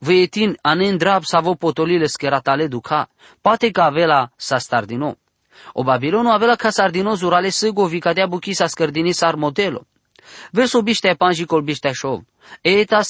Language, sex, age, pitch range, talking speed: English, male, 20-39, 145-195 Hz, 175 wpm